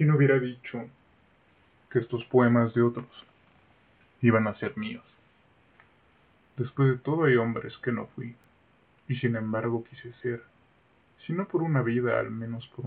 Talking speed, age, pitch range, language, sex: 155 wpm, 20-39, 115-135 Hz, Spanish, male